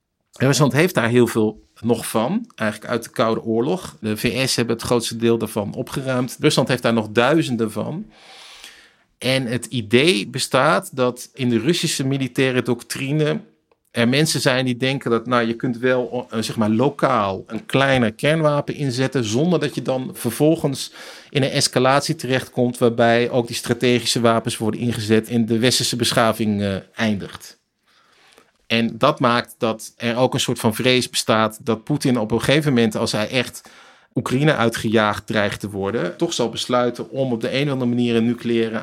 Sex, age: male, 50-69